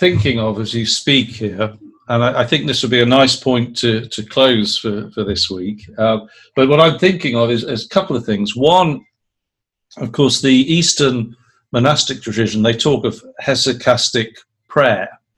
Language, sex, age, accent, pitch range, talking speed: English, male, 50-69, British, 110-135 Hz, 185 wpm